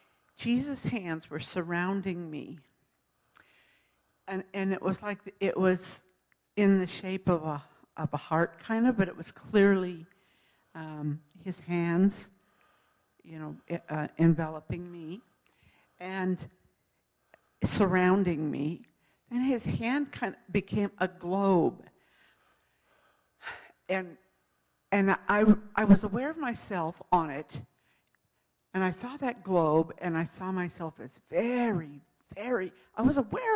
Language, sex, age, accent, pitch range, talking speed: English, female, 60-79, American, 160-195 Hz, 125 wpm